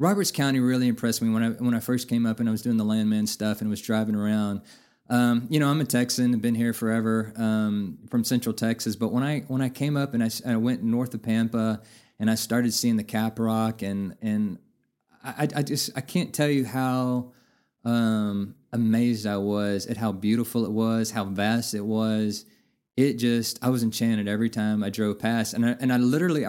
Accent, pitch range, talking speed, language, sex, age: American, 105-120 Hz, 220 wpm, English, male, 20-39